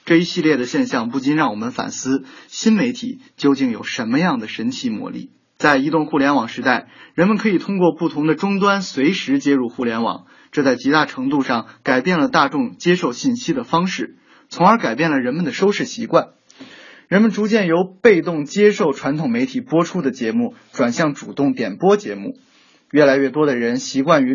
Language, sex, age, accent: Chinese, male, 20-39, native